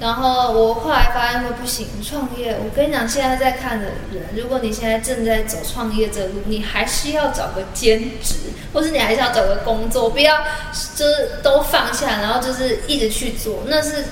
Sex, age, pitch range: female, 20-39, 220-260 Hz